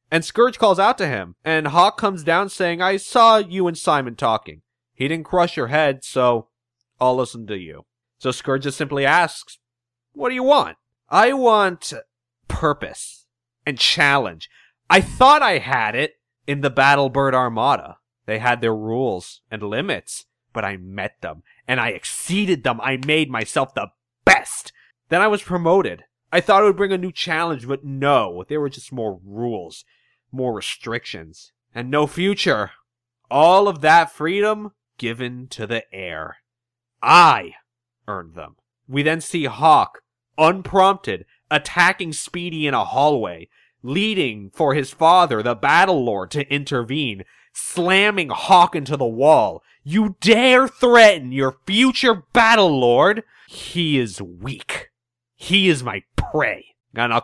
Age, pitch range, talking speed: 30-49, 120-180 Hz, 150 wpm